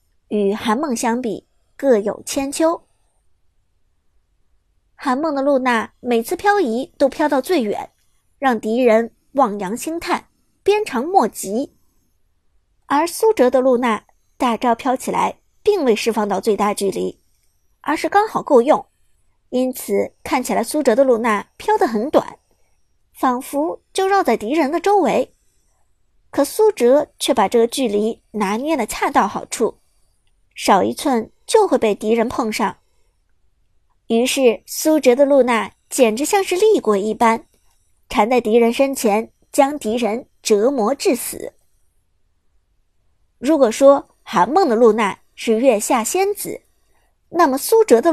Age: 50-69